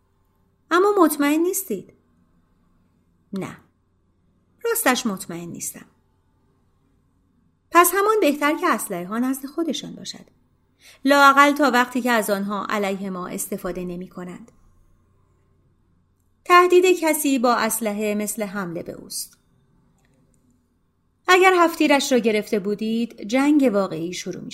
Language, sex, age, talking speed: Persian, female, 30-49, 105 wpm